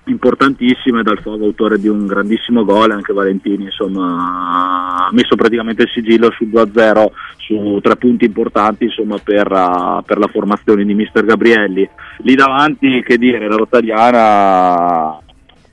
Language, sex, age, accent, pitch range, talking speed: Italian, male, 30-49, native, 100-115 Hz, 145 wpm